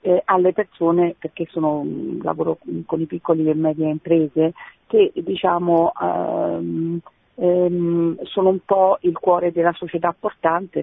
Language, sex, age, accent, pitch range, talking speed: Italian, female, 40-59, native, 170-205 Hz, 135 wpm